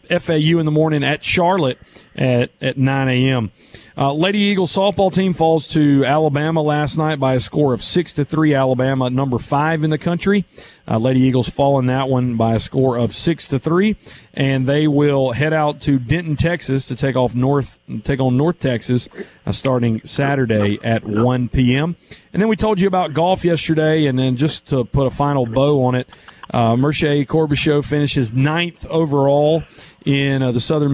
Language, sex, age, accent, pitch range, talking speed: English, male, 40-59, American, 130-165 Hz, 185 wpm